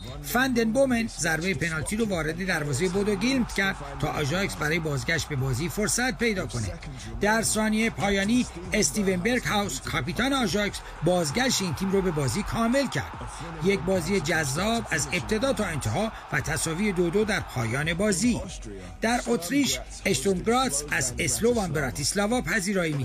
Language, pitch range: Persian, 165-225 Hz